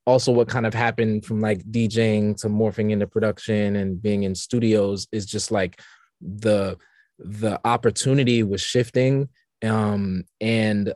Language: English